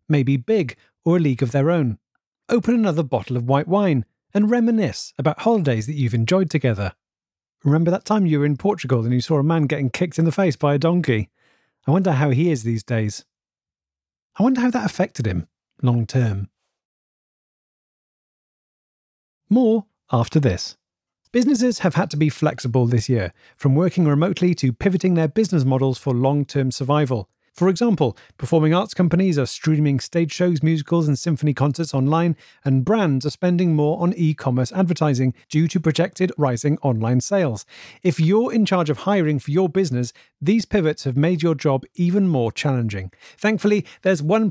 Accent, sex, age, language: British, male, 40-59, English